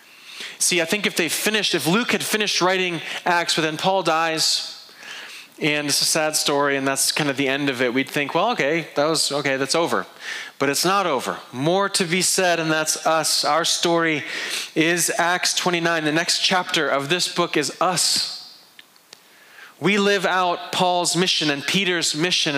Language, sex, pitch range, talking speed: English, male, 150-185 Hz, 185 wpm